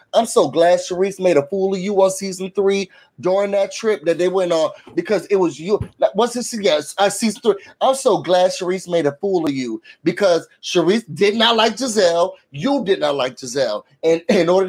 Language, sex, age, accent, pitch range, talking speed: English, male, 30-49, American, 175-220 Hz, 215 wpm